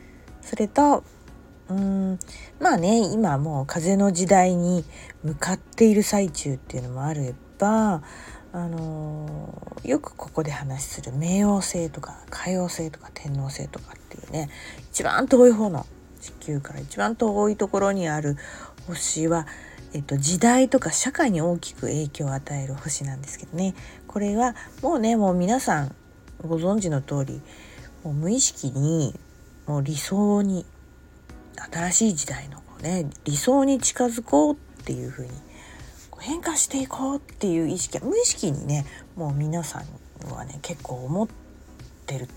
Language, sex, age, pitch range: Japanese, female, 40-59, 140-210 Hz